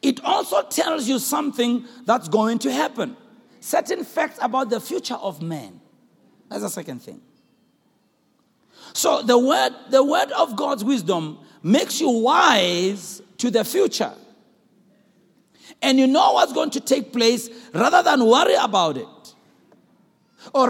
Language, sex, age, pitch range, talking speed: English, male, 50-69, 200-280 Hz, 135 wpm